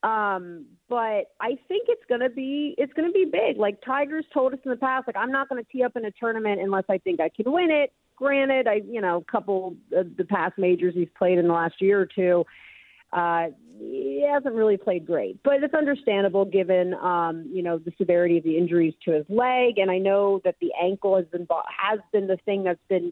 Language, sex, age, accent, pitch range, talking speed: English, female, 40-59, American, 180-250 Hz, 235 wpm